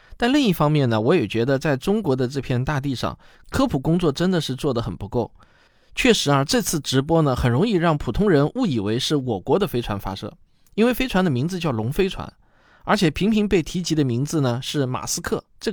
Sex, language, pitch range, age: male, Chinese, 125-175 Hz, 20-39